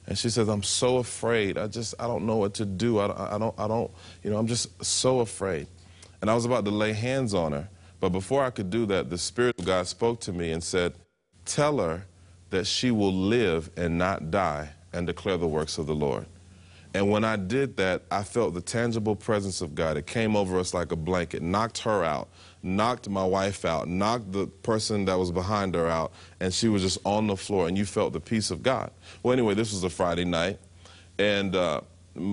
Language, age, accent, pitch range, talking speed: English, 30-49, American, 90-110 Hz, 230 wpm